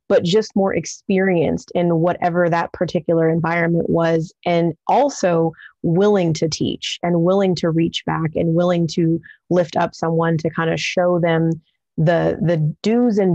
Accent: American